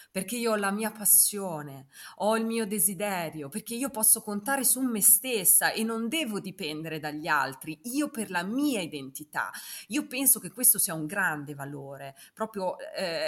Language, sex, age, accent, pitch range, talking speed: Italian, female, 30-49, native, 165-230 Hz, 170 wpm